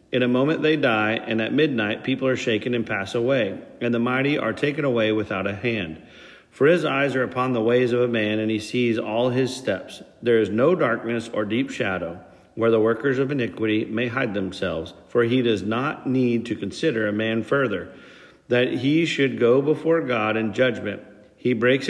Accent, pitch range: American, 110-135 Hz